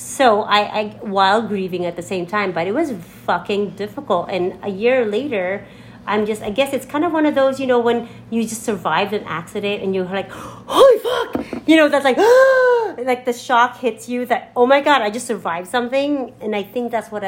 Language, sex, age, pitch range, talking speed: English, female, 30-49, 180-235 Hz, 220 wpm